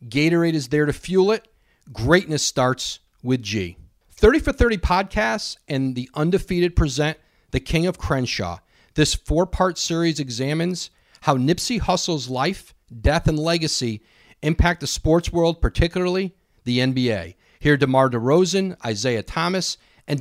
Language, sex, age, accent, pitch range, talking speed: English, male, 40-59, American, 125-170 Hz, 140 wpm